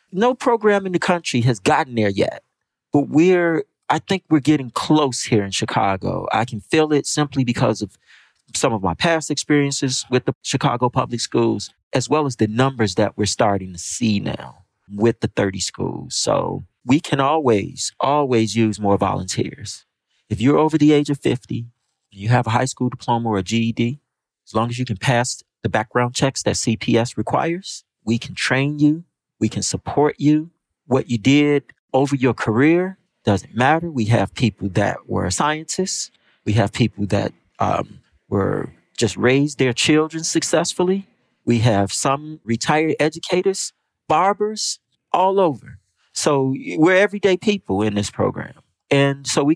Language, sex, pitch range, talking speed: English, male, 110-155 Hz, 165 wpm